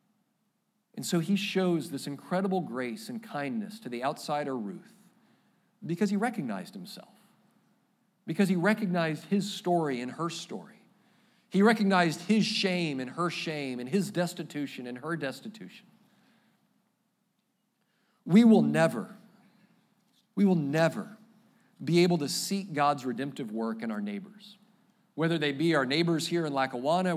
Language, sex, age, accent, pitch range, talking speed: English, male, 40-59, American, 155-215 Hz, 135 wpm